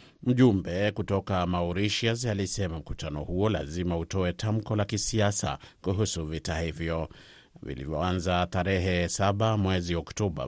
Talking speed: 110 wpm